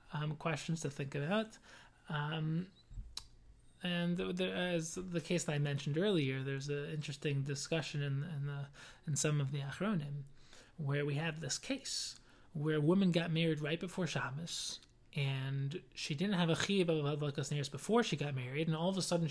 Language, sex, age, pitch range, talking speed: English, male, 20-39, 150-180 Hz, 175 wpm